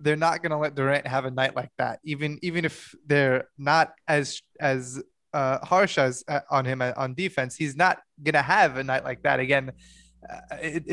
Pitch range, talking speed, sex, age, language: 135-165 Hz, 205 wpm, male, 20-39, English